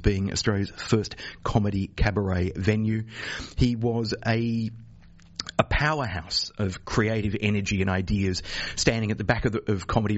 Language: English